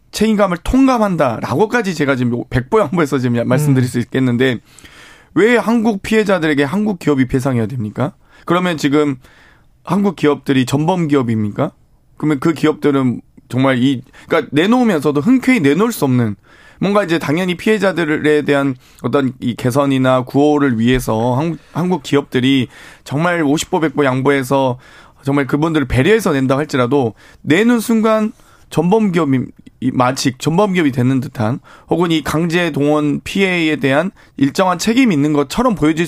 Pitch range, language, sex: 130-180 Hz, Korean, male